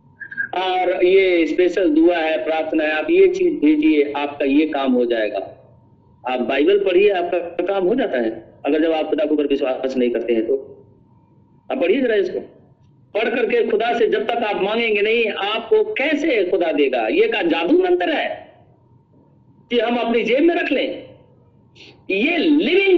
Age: 50-69